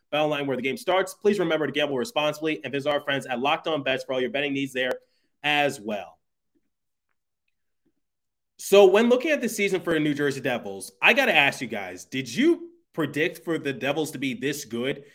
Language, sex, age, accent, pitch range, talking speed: English, male, 20-39, American, 145-175 Hz, 215 wpm